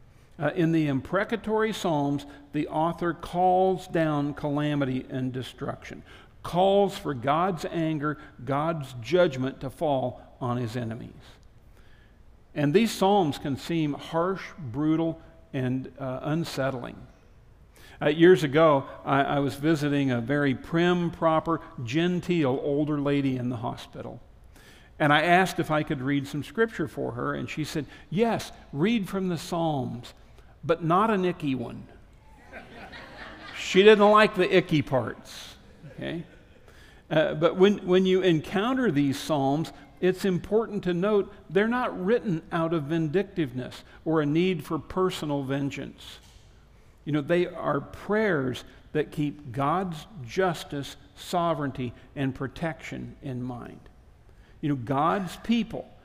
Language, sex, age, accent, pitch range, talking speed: English, male, 50-69, American, 135-180 Hz, 130 wpm